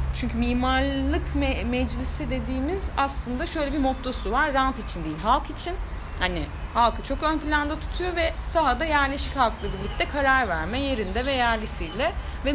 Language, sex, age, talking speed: Turkish, female, 30-49, 155 wpm